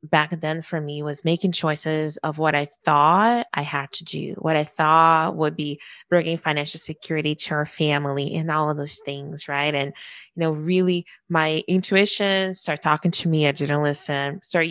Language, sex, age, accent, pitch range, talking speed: English, female, 20-39, American, 150-175 Hz, 190 wpm